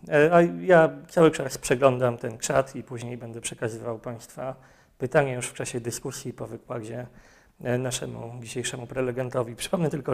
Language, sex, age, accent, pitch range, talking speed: Polish, male, 30-49, native, 125-140 Hz, 140 wpm